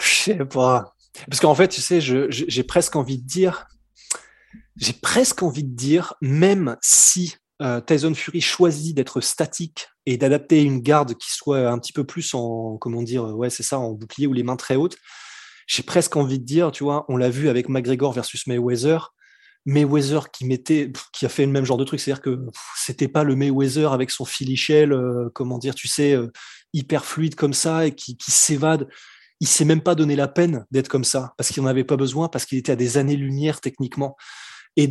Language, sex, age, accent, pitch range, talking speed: French, male, 20-39, French, 130-155 Hz, 215 wpm